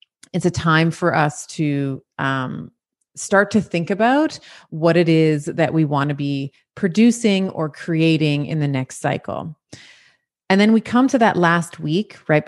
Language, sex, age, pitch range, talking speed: English, female, 30-49, 145-195 Hz, 170 wpm